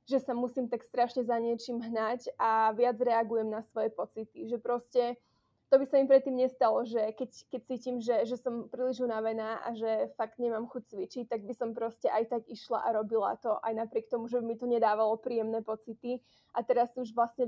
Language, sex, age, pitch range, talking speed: Slovak, female, 20-39, 225-250 Hz, 205 wpm